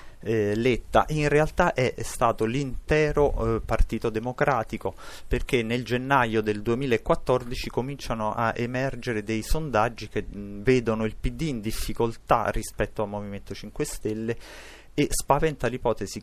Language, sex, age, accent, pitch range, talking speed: Italian, male, 30-49, native, 100-120 Hz, 120 wpm